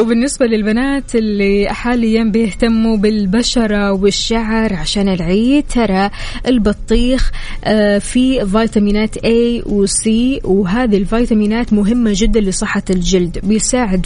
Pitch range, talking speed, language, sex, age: 200-245 Hz, 100 wpm, Arabic, female, 20-39